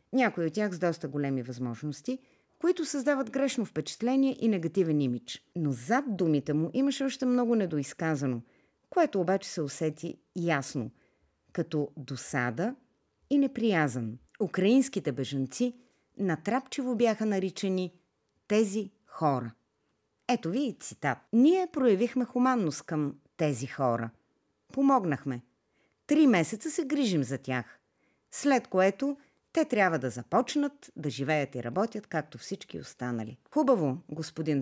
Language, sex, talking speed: Bulgarian, female, 120 wpm